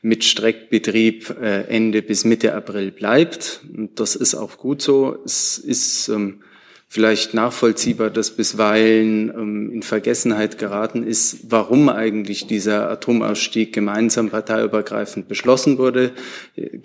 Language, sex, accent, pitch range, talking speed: German, male, German, 105-120 Hz, 115 wpm